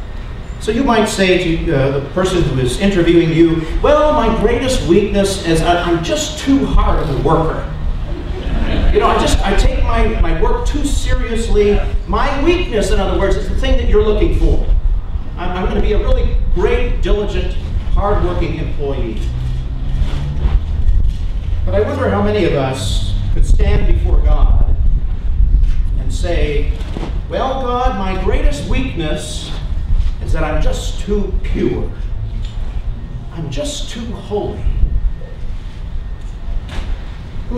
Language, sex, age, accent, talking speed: English, male, 40-59, American, 135 wpm